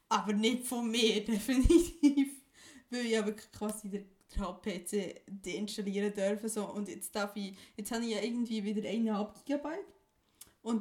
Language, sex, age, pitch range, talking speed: German, female, 20-39, 195-230 Hz, 140 wpm